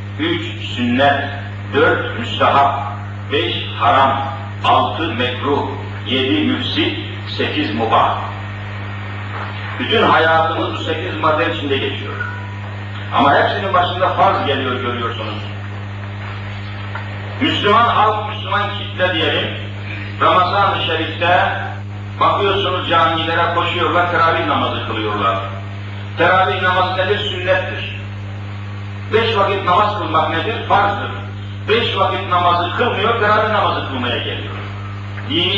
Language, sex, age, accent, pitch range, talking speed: Turkish, male, 50-69, native, 100-120 Hz, 95 wpm